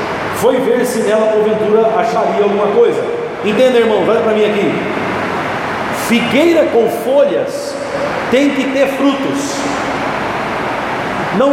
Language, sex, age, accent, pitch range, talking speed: Portuguese, male, 50-69, Brazilian, 230-300 Hz, 115 wpm